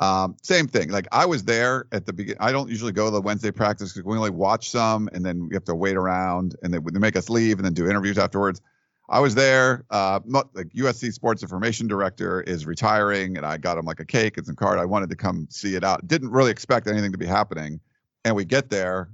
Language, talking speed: English, 255 wpm